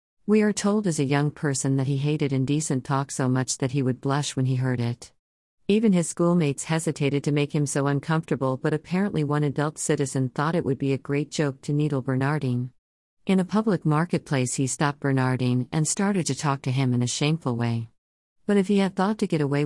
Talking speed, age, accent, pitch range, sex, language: 215 wpm, 50-69, American, 135-160 Hz, female, Malayalam